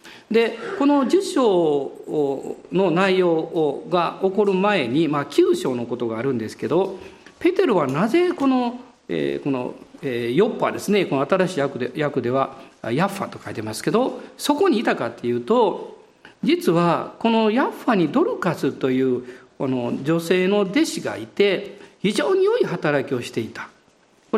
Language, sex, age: Japanese, male, 50-69